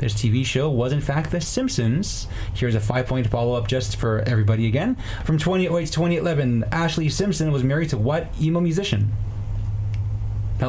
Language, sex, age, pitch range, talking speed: English, male, 20-39, 110-170 Hz, 175 wpm